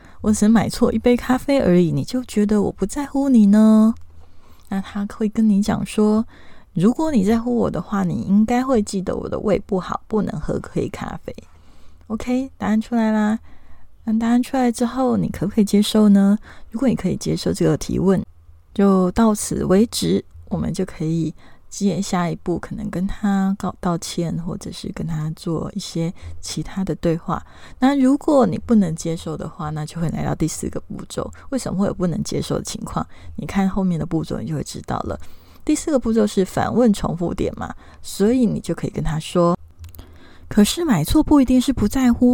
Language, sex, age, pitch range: Chinese, female, 20-39, 170-230 Hz